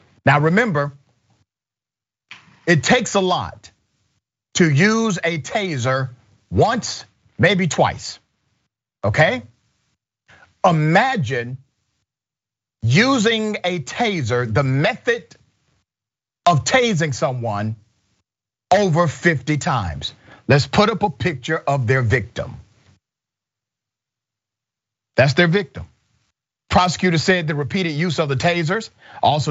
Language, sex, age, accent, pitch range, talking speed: English, male, 50-69, American, 115-165 Hz, 95 wpm